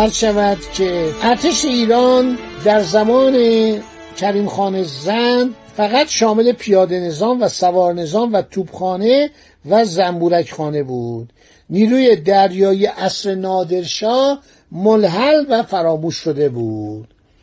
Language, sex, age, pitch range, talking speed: Persian, male, 60-79, 185-230 Hz, 105 wpm